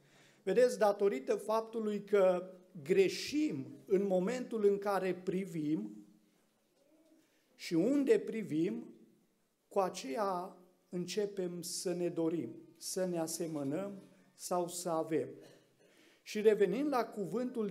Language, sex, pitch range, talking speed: Romanian, male, 165-205 Hz, 100 wpm